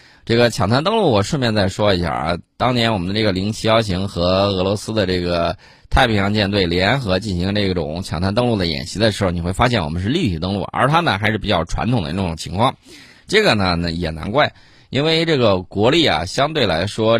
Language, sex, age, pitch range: Chinese, male, 20-39, 90-115 Hz